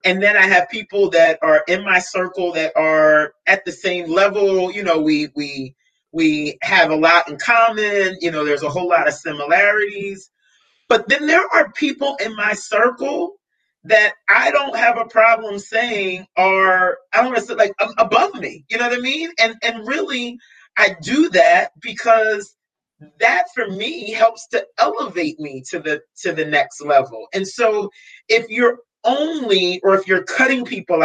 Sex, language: male, English